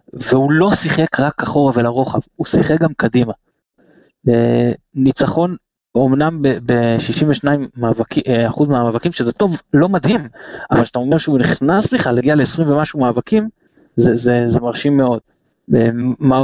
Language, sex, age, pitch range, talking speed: Hebrew, male, 20-39, 120-155 Hz, 140 wpm